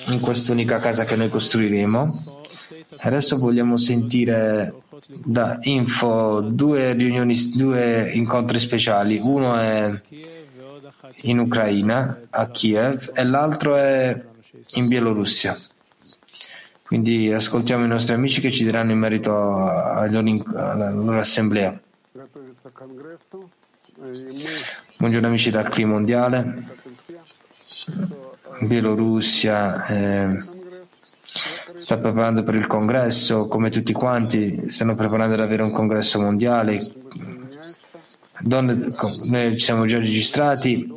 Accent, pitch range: native, 110-135 Hz